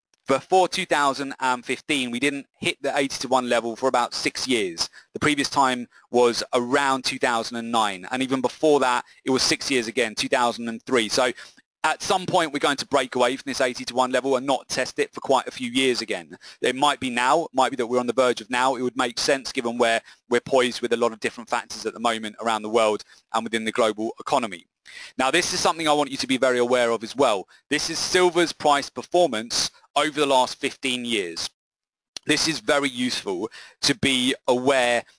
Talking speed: 215 wpm